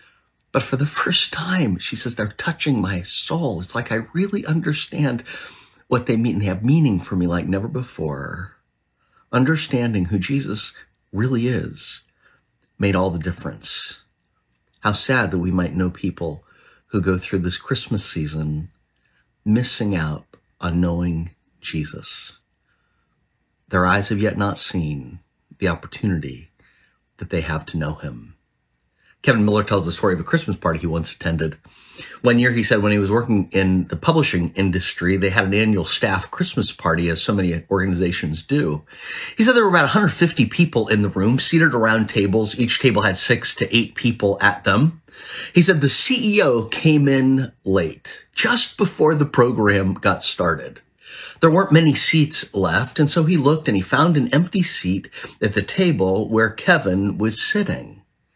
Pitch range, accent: 90-135 Hz, American